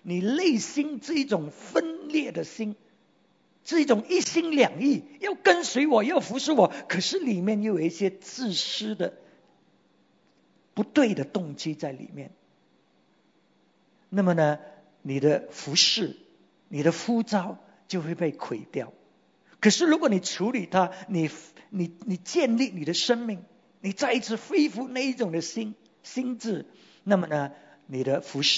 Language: English